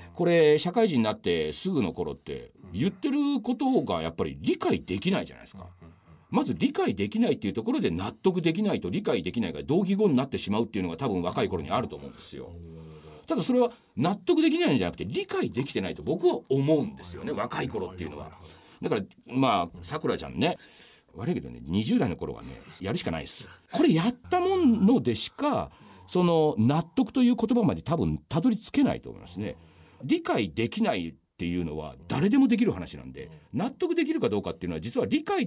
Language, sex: Japanese, male